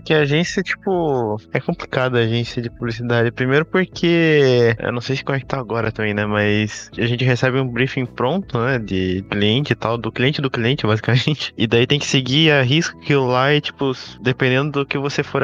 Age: 20-39